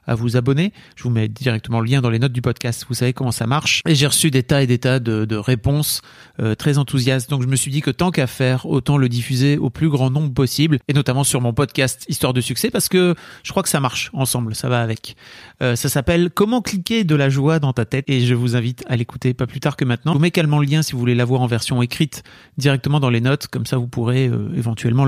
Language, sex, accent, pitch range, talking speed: French, male, French, 120-150 Hz, 275 wpm